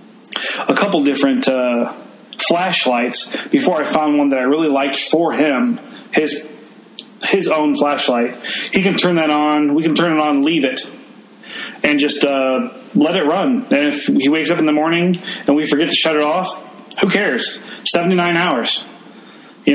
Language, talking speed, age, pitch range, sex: English, 175 wpm, 30-49, 140-220 Hz, male